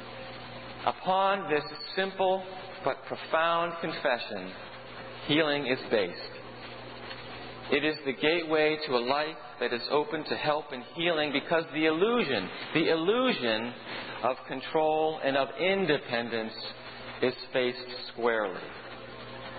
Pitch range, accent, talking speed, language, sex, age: 125-165 Hz, American, 110 wpm, English, male, 40-59